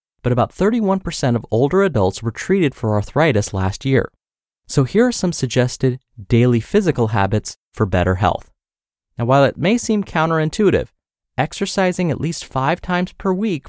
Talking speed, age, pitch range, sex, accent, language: 160 wpm, 30-49, 110-165 Hz, male, American, English